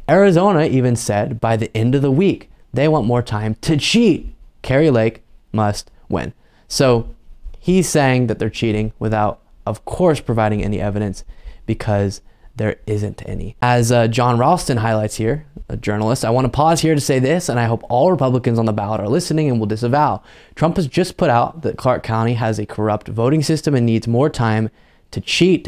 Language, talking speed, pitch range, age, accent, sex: English, 195 wpm, 110-140 Hz, 20-39, American, male